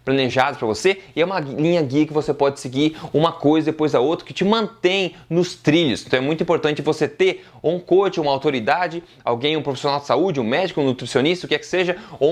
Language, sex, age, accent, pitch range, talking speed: Portuguese, male, 20-39, Brazilian, 140-175 Hz, 235 wpm